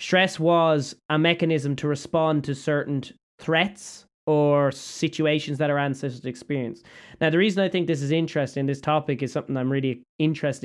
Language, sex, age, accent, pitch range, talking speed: English, male, 20-39, Irish, 135-155 Hz, 170 wpm